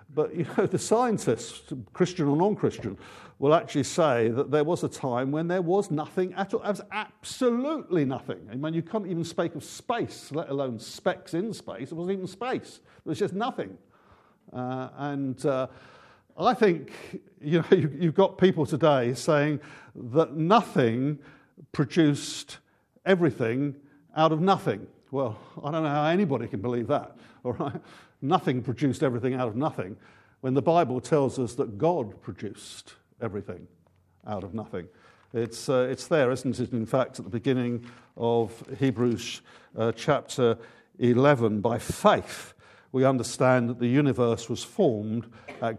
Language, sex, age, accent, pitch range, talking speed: English, male, 50-69, British, 120-160 Hz, 160 wpm